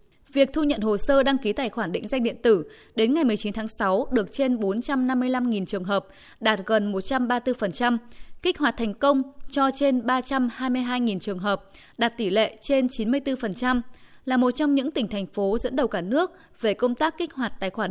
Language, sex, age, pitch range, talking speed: Vietnamese, female, 20-39, 210-265 Hz, 195 wpm